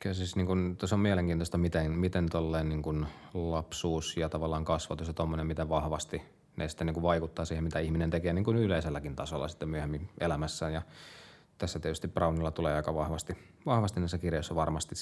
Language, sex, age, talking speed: Finnish, male, 20-39, 155 wpm